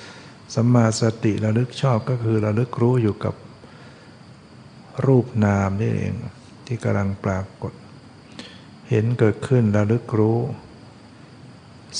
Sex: male